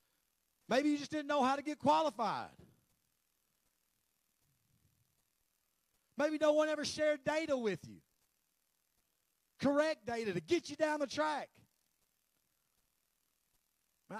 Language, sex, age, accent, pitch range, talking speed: English, male, 40-59, American, 150-250 Hz, 110 wpm